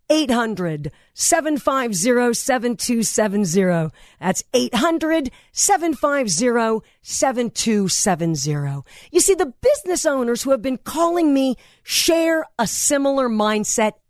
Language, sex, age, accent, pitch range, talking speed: English, female, 50-69, American, 210-300 Hz, 70 wpm